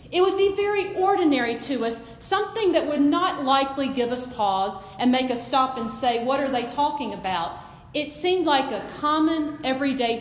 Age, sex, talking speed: 40-59, female, 190 wpm